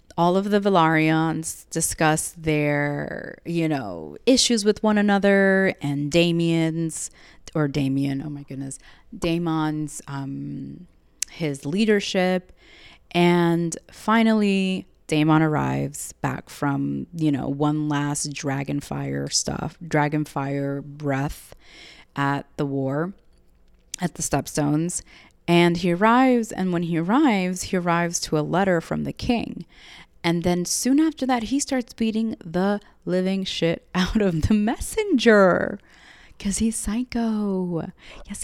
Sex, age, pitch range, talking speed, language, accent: female, 30-49, 150-210 Hz, 120 wpm, English, American